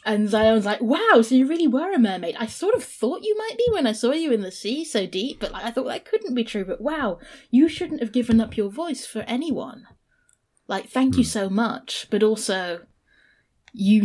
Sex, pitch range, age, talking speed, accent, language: female, 180-225 Hz, 20-39, 225 wpm, British, English